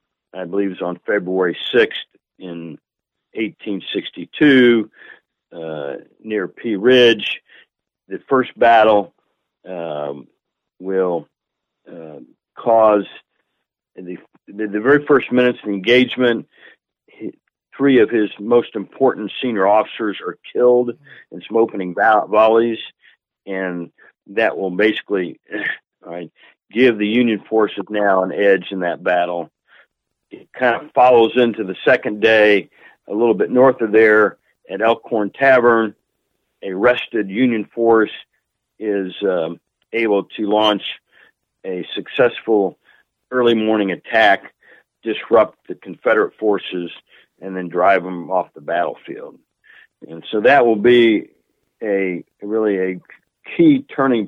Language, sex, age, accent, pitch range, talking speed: English, male, 50-69, American, 95-120 Hz, 120 wpm